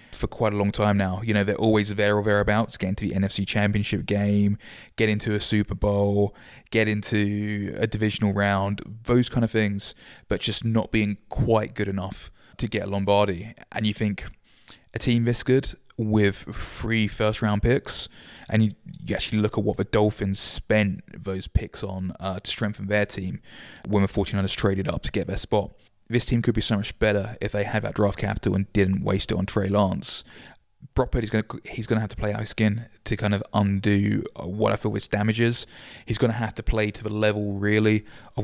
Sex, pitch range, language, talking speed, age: male, 100-115 Hz, English, 210 wpm, 20-39